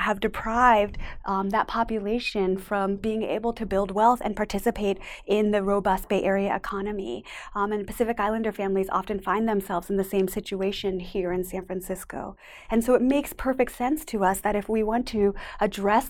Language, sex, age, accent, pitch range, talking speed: English, female, 20-39, American, 205-235 Hz, 185 wpm